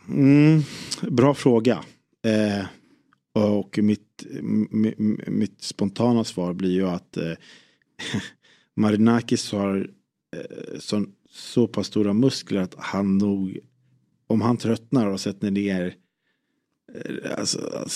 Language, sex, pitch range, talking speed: Swedish, male, 100-120 Hz, 110 wpm